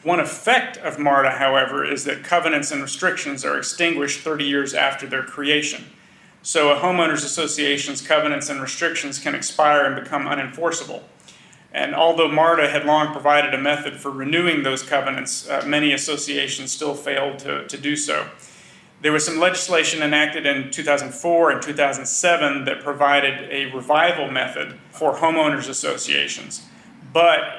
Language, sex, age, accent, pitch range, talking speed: English, male, 40-59, American, 140-155 Hz, 150 wpm